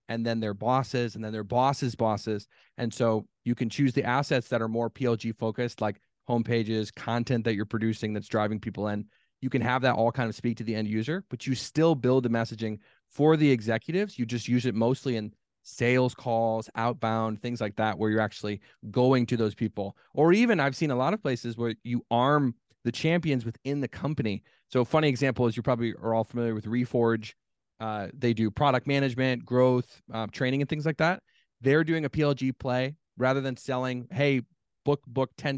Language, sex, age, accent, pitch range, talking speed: English, male, 30-49, American, 115-135 Hz, 205 wpm